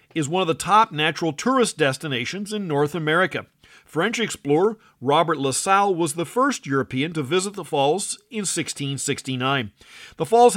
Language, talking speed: English, 155 wpm